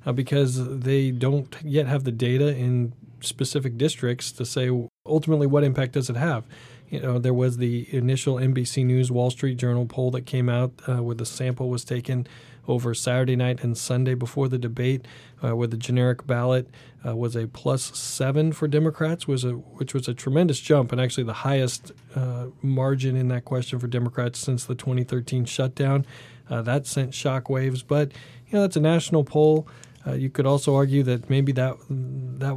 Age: 40-59